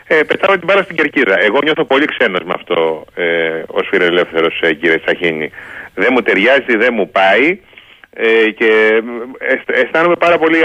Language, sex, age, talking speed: Greek, male, 30-49, 140 wpm